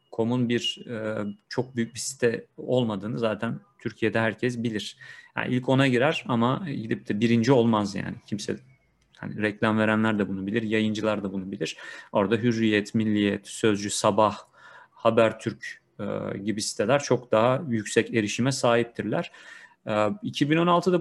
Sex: male